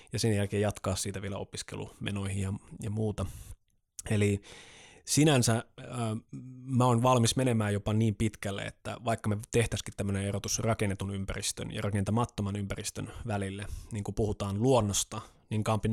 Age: 20-39